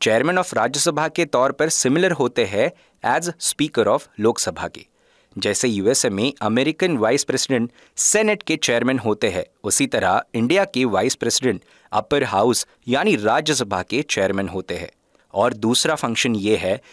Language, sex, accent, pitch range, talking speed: Hindi, male, native, 110-160 Hz, 155 wpm